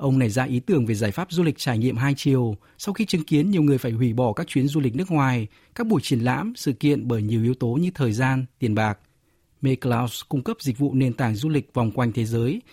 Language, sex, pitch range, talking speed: Vietnamese, male, 120-155 Hz, 275 wpm